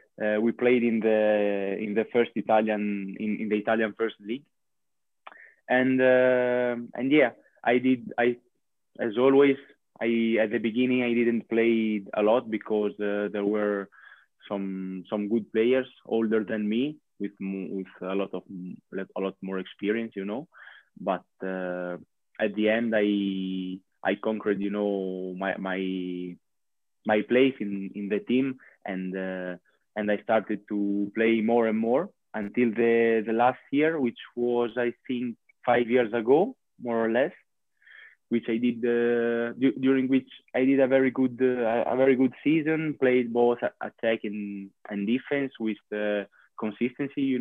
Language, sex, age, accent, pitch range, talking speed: English, male, 20-39, Spanish, 105-125 Hz, 160 wpm